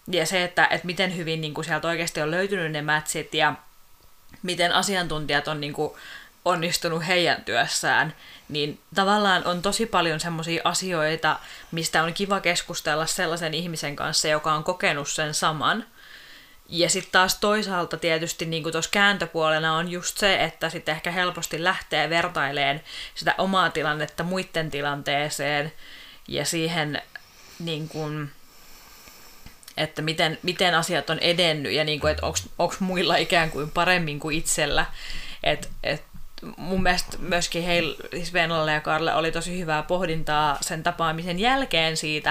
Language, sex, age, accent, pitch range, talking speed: Finnish, female, 30-49, native, 155-175 Hz, 140 wpm